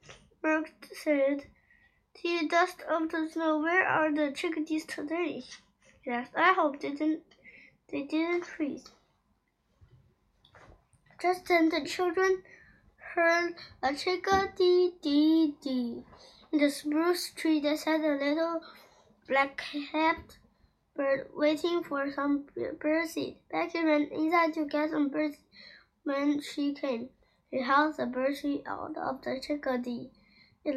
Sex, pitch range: female, 280-335 Hz